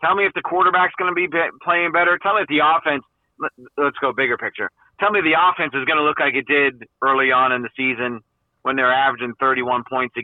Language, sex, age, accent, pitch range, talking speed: English, male, 30-49, American, 125-150 Hz, 250 wpm